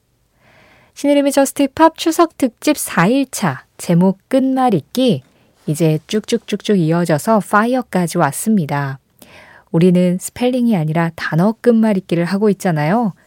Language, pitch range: Korean, 155-235 Hz